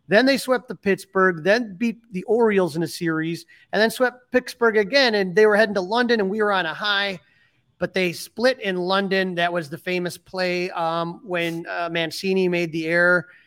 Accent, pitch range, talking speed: American, 170-190 Hz, 205 wpm